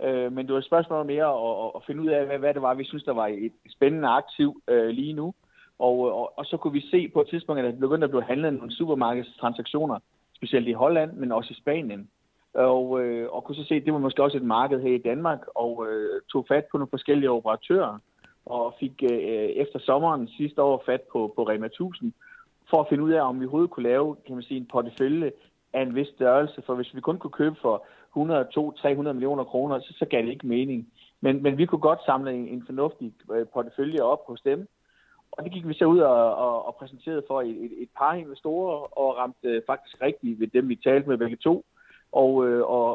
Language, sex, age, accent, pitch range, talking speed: Danish, male, 30-49, native, 120-150 Hz, 230 wpm